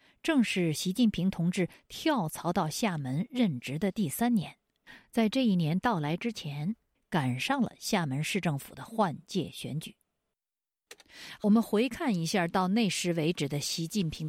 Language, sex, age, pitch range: Chinese, female, 50-69, 165-245 Hz